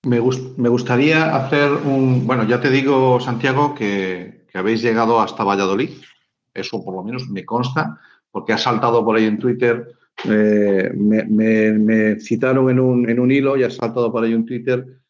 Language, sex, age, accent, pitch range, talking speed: English, male, 50-69, Spanish, 110-130 Hz, 185 wpm